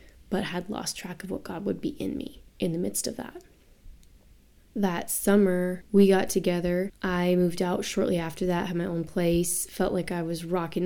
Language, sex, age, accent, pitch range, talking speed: English, female, 20-39, American, 175-195 Hz, 200 wpm